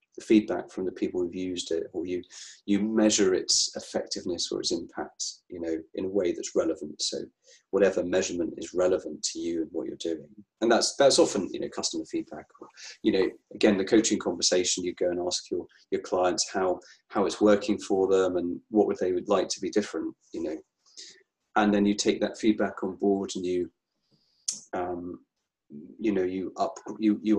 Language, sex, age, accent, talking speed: English, male, 30-49, British, 200 wpm